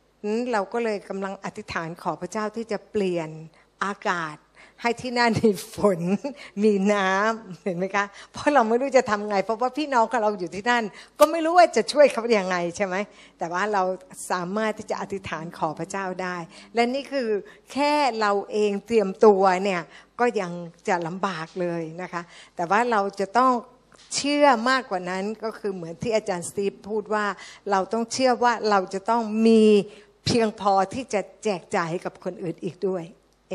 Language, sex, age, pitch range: Thai, female, 60-79, 185-225 Hz